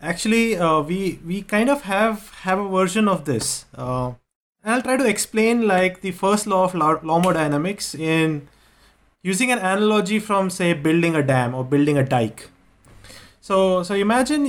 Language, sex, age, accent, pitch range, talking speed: English, male, 30-49, Indian, 155-205 Hz, 165 wpm